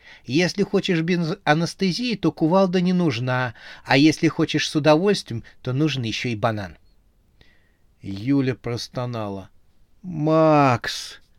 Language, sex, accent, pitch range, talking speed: Russian, male, native, 105-160 Hz, 110 wpm